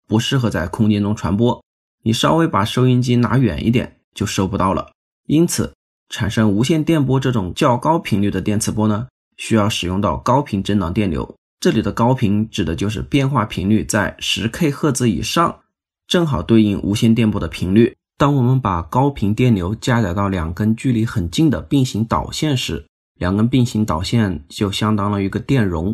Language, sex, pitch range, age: Chinese, male, 100-125 Hz, 20-39